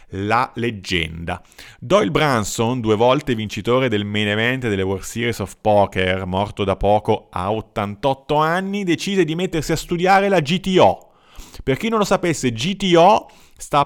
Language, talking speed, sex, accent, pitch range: Italian, 150 wpm, male, native, 105-150 Hz